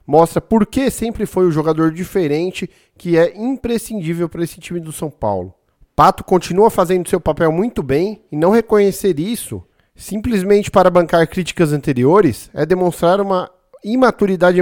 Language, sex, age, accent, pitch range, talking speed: Portuguese, male, 40-59, Brazilian, 160-200 Hz, 150 wpm